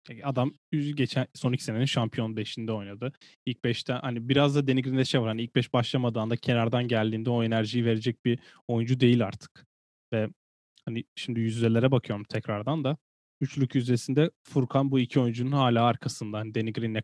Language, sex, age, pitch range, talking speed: Turkish, male, 10-29, 115-135 Hz, 175 wpm